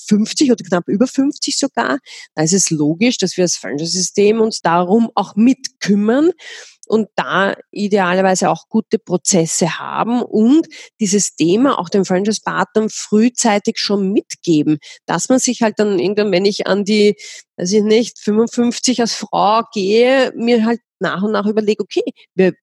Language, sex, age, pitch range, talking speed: German, female, 30-49, 180-220 Hz, 160 wpm